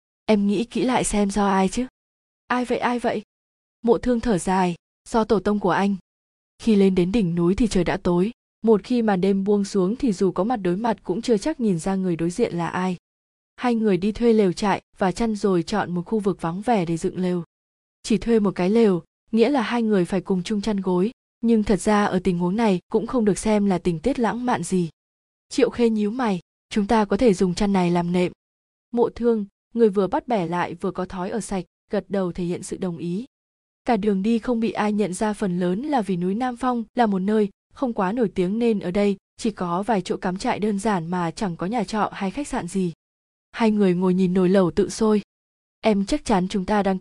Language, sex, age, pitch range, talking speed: Vietnamese, female, 20-39, 185-230 Hz, 245 wpm